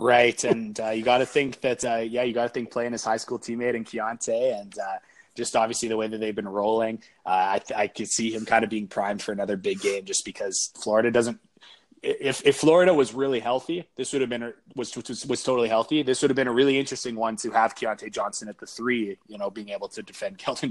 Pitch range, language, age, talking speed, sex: 110-135 Hz, English, 20-39, 250 wpm, male